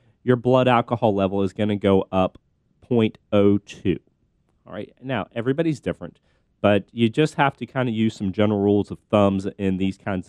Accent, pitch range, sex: American, 100-130 Hz, male